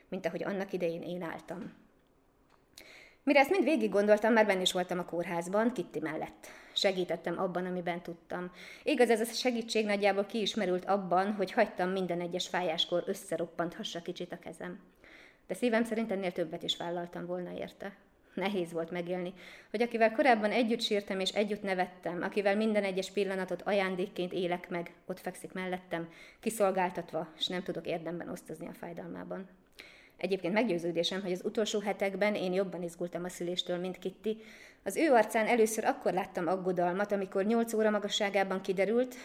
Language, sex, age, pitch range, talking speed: Hungarian, female, 20-39, 175-210 Hz, 155 wpm